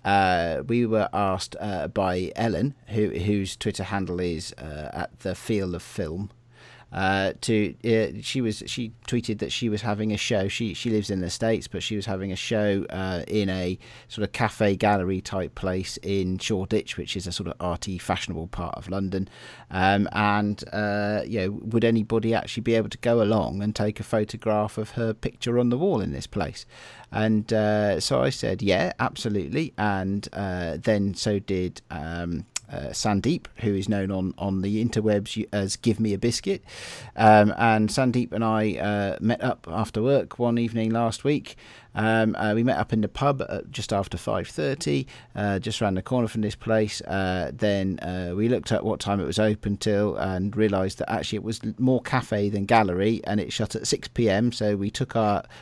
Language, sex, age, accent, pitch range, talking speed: English, male, 40-59, British, 95-115 Hz, 195 wpm